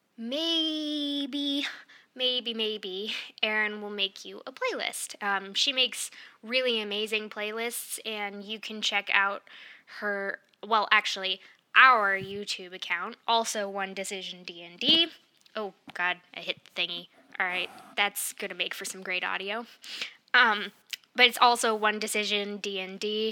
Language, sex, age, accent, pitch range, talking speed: English, female, 10-29, American, 200-255 Hz, 135 wpm